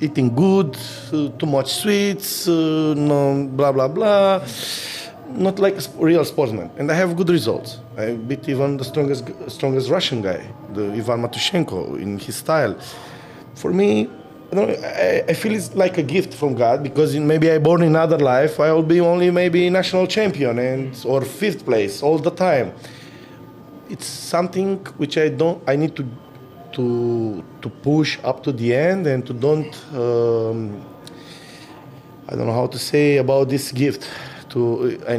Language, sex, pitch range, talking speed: English, male, 130-160 Hz, 170 wpm